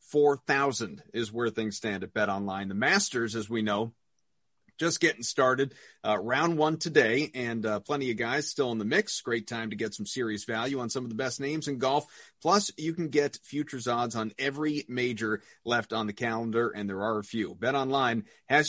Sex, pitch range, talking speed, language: male, 110-145 Hz, 210 wpm, English